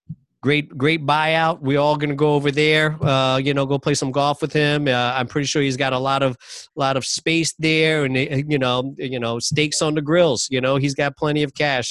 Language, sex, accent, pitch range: English, male, American, 130-155 Hz